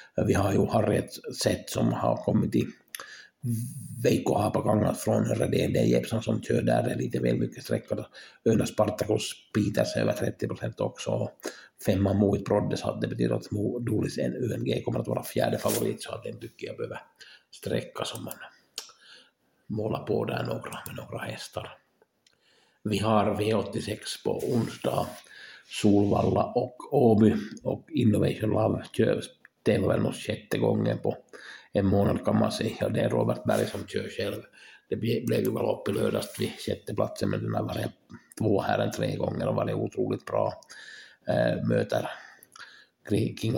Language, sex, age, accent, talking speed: Swedish, male, 60-79, Finnish, 165 wpm